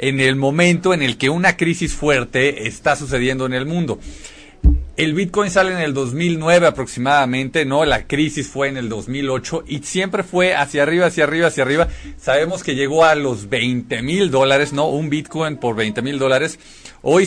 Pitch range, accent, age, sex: 130-165 Hz, Mexican, 50-69, male